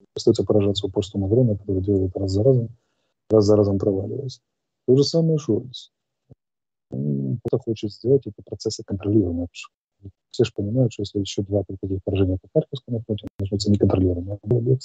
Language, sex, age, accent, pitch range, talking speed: Russian, male, 30-49, native, 100-115 Hz, 160 wpm